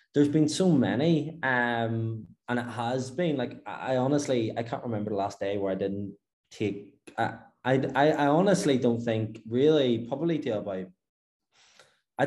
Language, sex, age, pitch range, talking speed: English, male, 20-39, 95-115 Hz, 170 wpm